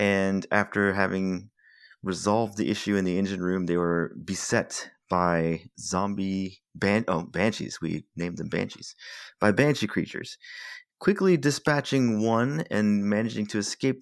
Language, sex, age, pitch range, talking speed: English, male, 30-49, 90-135 Hz, 135 wpm